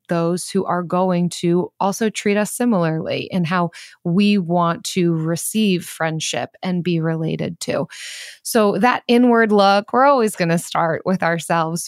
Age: 20-39